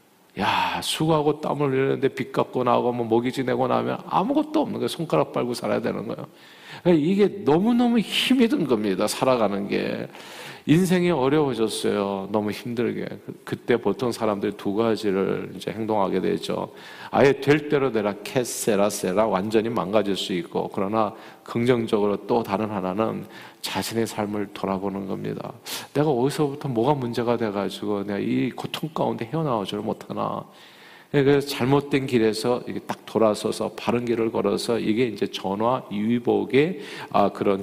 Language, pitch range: Korean, 105-145 Hz